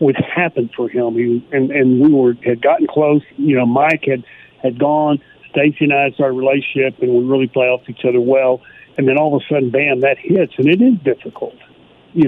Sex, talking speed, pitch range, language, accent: male, 225 wpm, 125-150 Hz, English, American